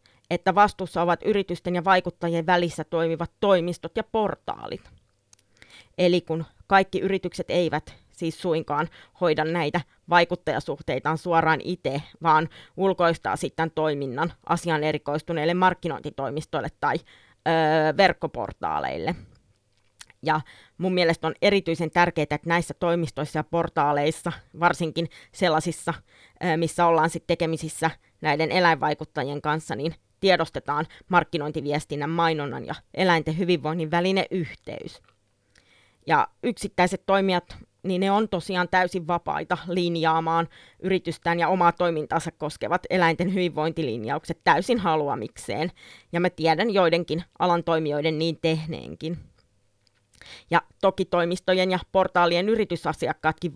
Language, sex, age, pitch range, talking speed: Finnish, female, 20-39, 155-180 Hz, 105 wpm